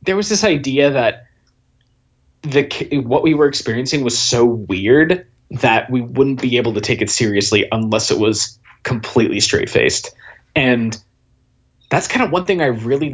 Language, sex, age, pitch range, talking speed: English, male, 20-39, 120-155 Hz, 160 wpm